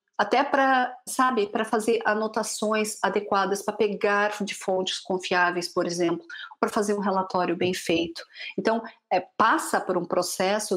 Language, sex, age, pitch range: Portuguese, female, 50-69, 185-240 Hz